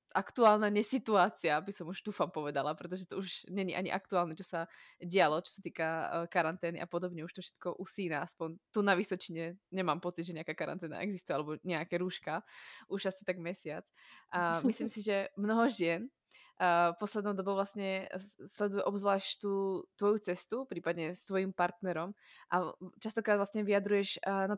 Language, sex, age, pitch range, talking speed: Slovak, female, 20-39, 175-205 Hz, 165 wpm